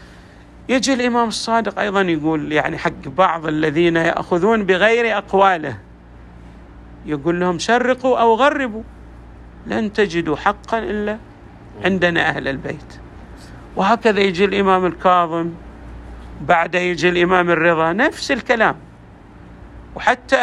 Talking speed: 105 wpm